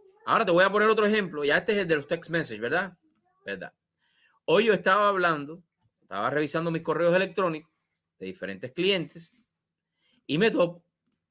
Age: 30-49